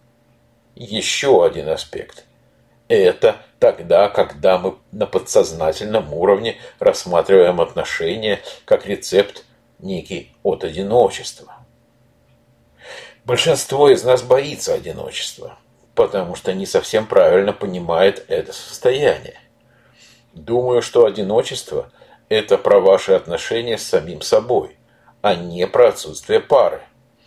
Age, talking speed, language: 50-69, 100 wpm, Russian